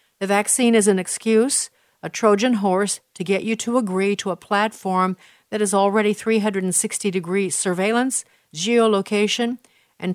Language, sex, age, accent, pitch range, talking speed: English, female, 50-69, American, 185-220 Hz, 135 wpm